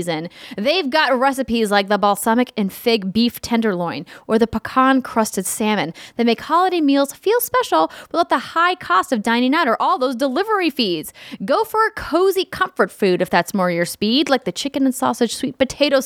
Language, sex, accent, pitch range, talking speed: English, female, American, 195-260 Hz, 195 wpm